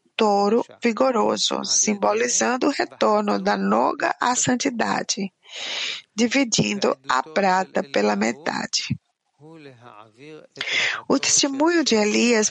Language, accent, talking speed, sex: English, Brazilian, 85 wpm, female